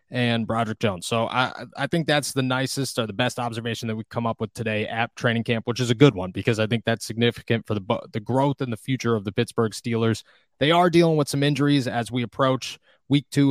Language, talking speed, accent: English, 245 wpm, American